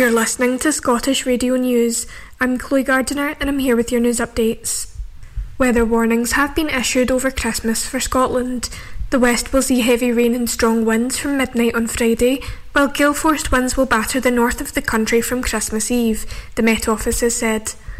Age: 10-29